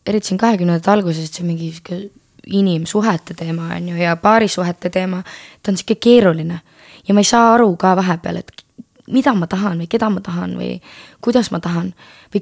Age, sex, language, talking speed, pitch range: 20-39, female, English, 185 wpm, 170-215 Hz